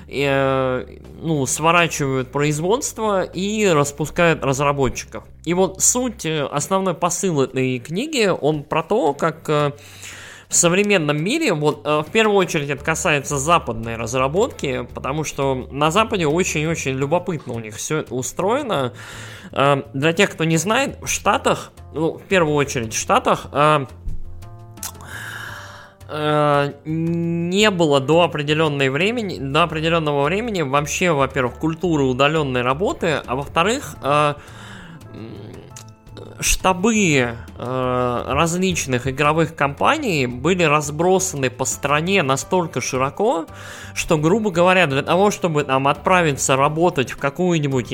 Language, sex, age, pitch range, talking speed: Russian, male, 20-39, 125-170 Hz, 110 wpm